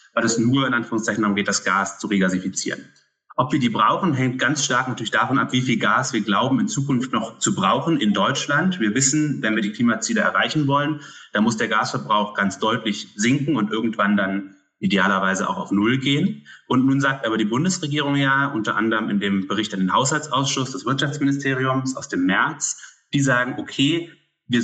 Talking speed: 190 wpm